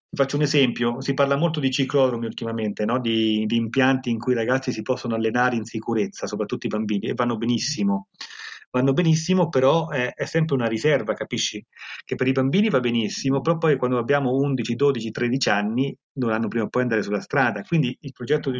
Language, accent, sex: Italian, native, male